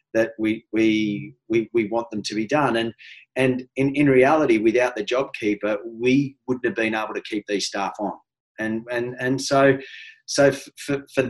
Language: English